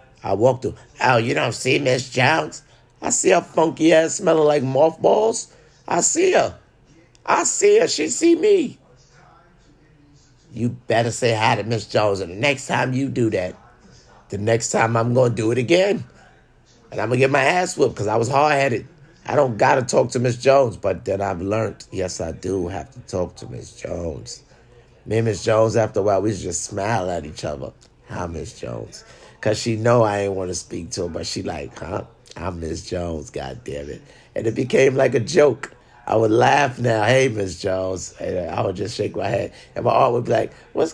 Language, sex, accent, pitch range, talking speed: English, male, American, 100-135 Hz, 210 wpm